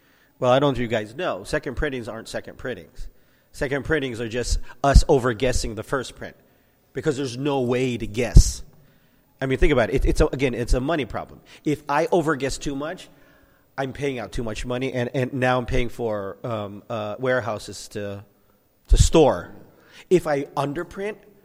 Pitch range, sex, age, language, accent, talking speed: 120-150 Hz, male, 40-59, English, American, 185 wpm